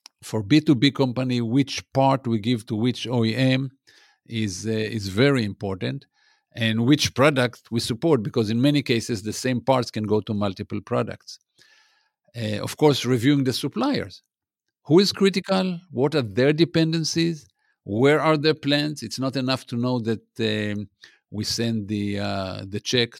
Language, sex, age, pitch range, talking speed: English, male, 50-69, 105-135 Hz, 160 wpm